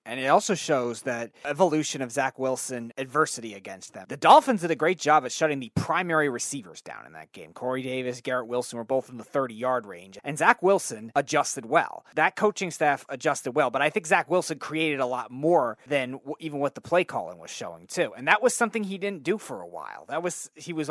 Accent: American